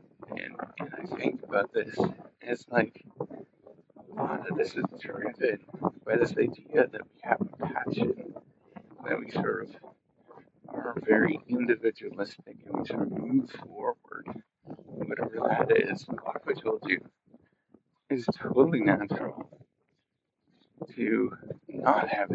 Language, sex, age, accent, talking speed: English, male, 50-69, American, 120 wpm